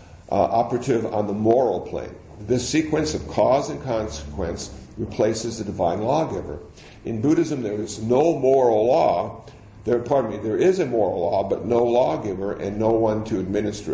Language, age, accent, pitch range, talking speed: English, 60-79, American, 100-120 Hz, 170 wpm